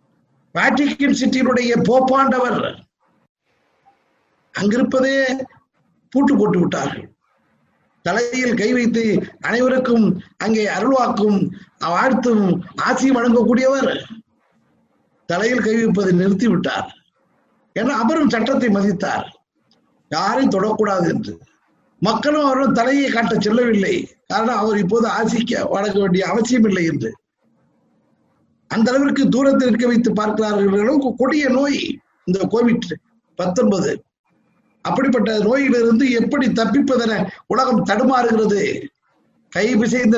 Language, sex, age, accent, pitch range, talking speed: Tamil, male, 50-69, native, 205-250 Hz, 90 wpm